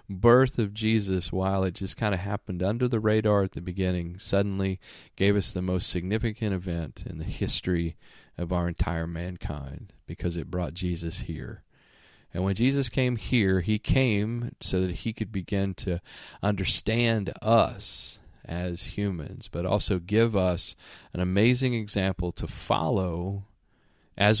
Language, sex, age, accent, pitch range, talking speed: English, male, 40-59, American, 90-115 Hz, 150 wpm